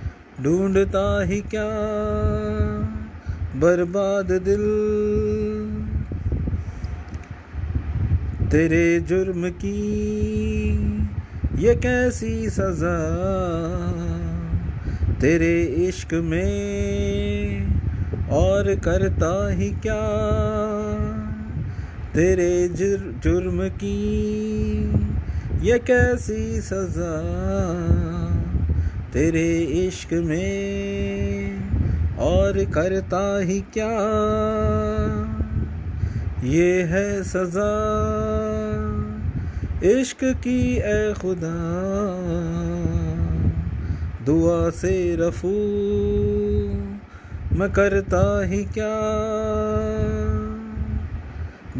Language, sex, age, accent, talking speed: Hindi, male, 30-49, native, 50 wpm